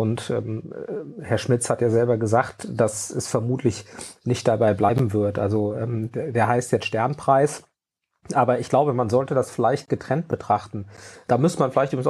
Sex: male